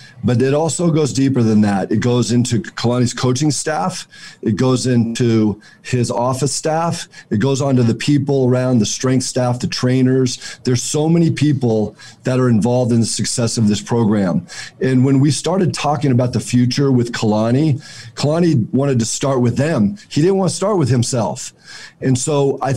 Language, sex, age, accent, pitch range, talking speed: English, male, 40-59, American, 120-150 Hz, 185 wpm